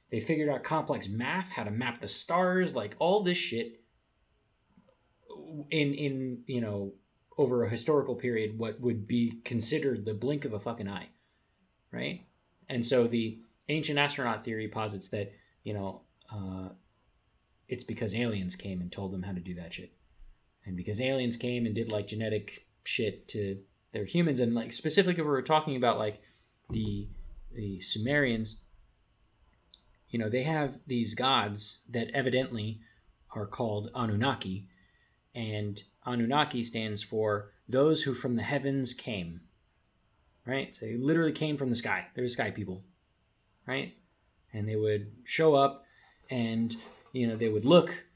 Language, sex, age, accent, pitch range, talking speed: English, male, 20-39, American, 105-140 Hz, 155 wpm